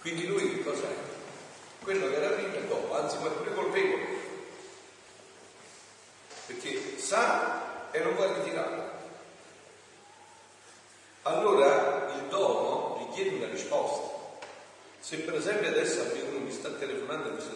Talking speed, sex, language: 130 wpm, male, Italian